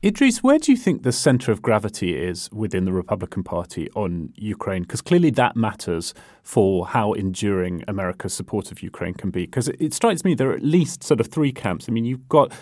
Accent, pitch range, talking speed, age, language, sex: British, 105-130 Hz, 220 wpm, 30-49, English, male